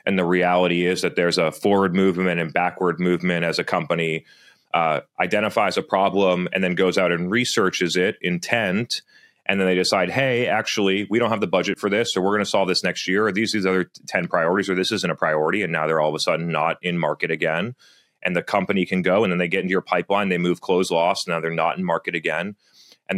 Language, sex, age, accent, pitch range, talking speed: English, male, 30-49, American, 85-95 Hz, 240 wpm